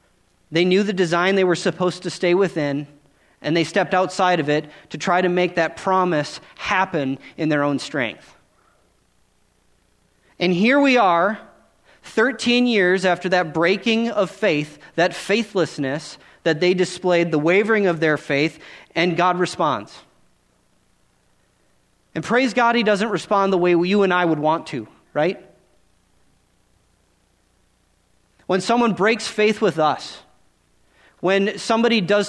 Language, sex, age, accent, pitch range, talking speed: English, male, 30-49, American, 145-200 Hz, 140 wpm